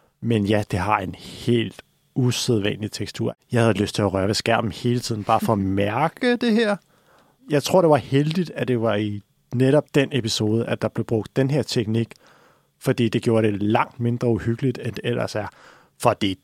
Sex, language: male, Danish